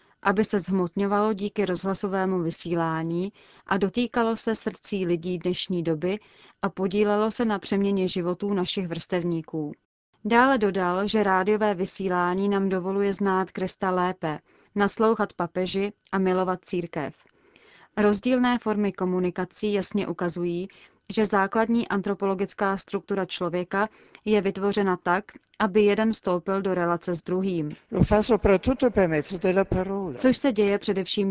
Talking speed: 115 wpm